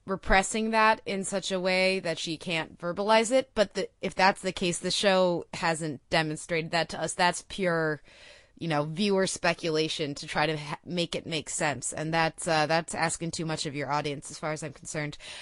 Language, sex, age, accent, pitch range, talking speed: English, female, 20-39, American, 165-205 Hz, 205 wpm